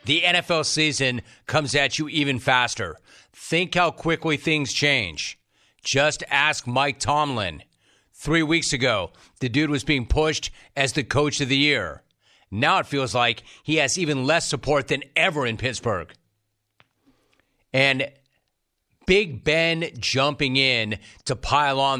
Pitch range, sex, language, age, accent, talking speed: 120-150 Hz, male, English, 40-59, American, 140 wpm